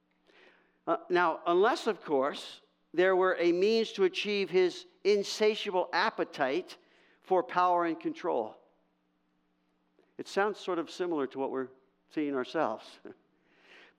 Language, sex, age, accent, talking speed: English, male, 50-69, American, 120 wpm